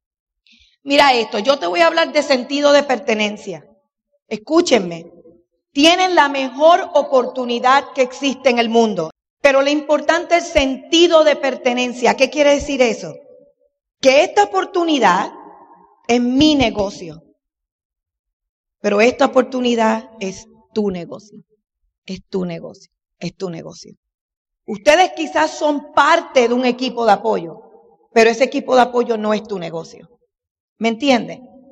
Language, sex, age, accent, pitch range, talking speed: Spanish, female, 40-59, American, 230-320 Hz, 130 wpm